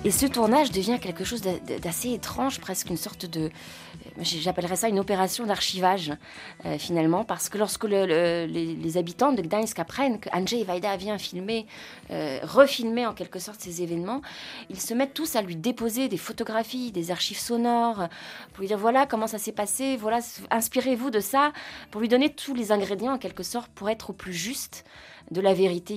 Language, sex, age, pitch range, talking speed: French, female, 20-39, 170-225 Hz, 190 wpm